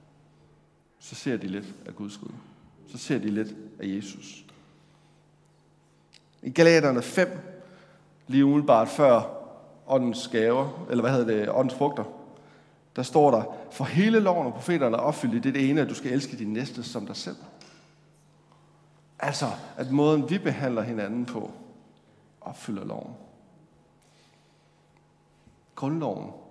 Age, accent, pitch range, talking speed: 60-79, native, 110-155 Hz, 135 wpm